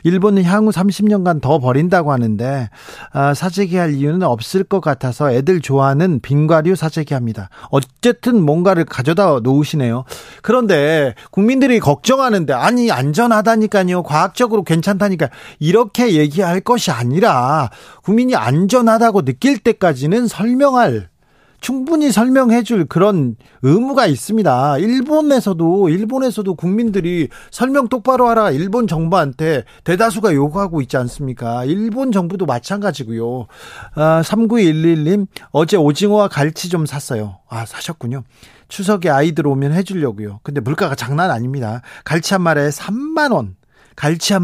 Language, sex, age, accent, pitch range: Korean, male, 40-59, native, 145-210 Hz